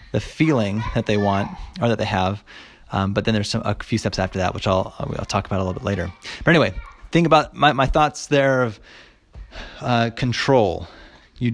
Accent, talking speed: American, 215 wpm